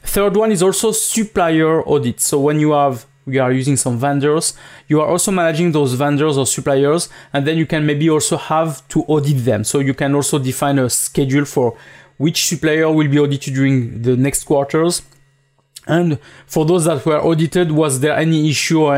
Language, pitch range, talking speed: English, 135-160 Hz, 195 wpm